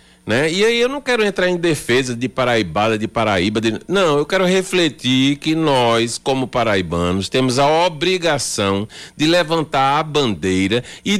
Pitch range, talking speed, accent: 110-180 Hz, 160 wpm, Brazilian